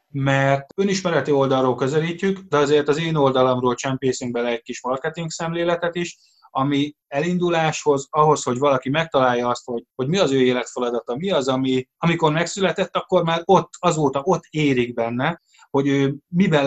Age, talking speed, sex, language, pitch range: 20-39, 160 wpm, male, Hungarian, 125-155 Hz